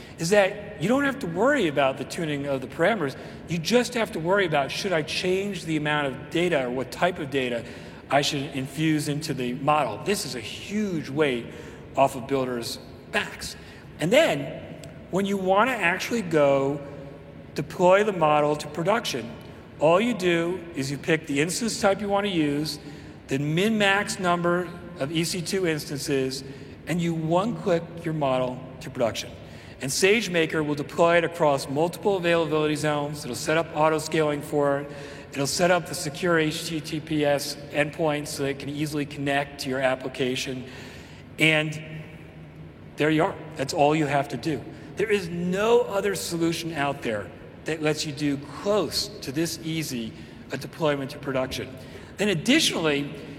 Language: English